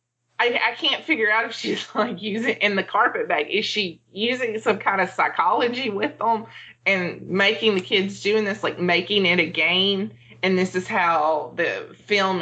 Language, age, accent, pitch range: English, 20-39, American, 175-225 Hz